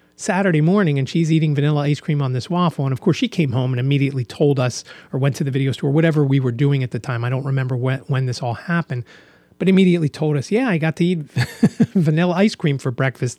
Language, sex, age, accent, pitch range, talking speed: English, male, 30-49, American, 125-160 Hz, 250 wpm